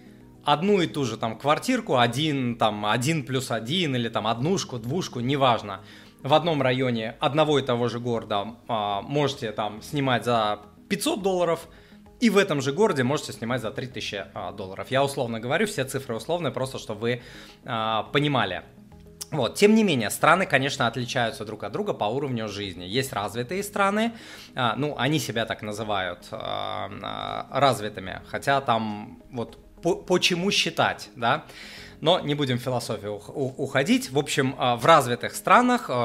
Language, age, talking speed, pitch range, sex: Russian, 20-39, 155 wpm, 110-150 Hz, male